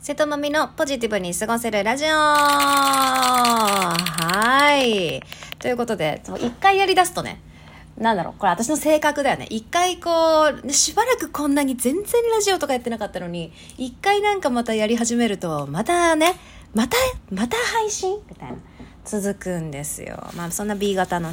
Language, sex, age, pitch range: Japanese, female, 30-49, 205-310 Hz